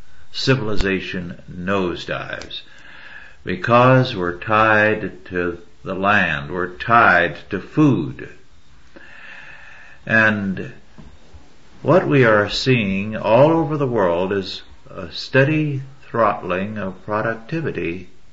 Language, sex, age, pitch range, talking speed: English, male, 60-79, 95-125 Hz, 90 wpm